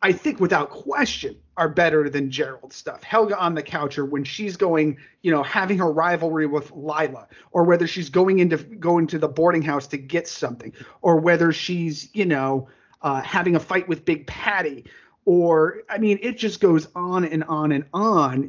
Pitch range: 155-215 Hz